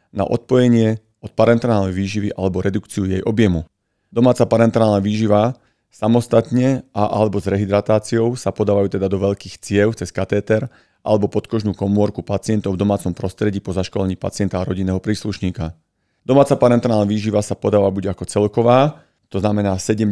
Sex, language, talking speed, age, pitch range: male, Slovak, 145 wpm, 40-59, 100-115 Hz